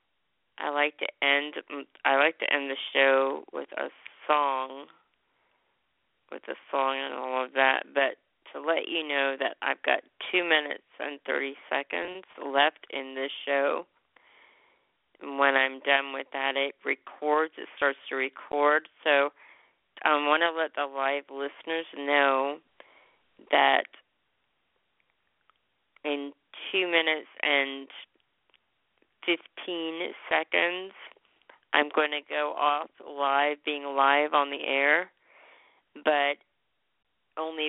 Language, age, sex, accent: English, 40-59, female, American